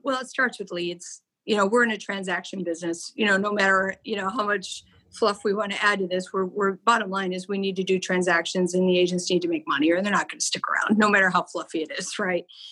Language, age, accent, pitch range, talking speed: English, 40-59, American, 175-205 Hz, 275 wpm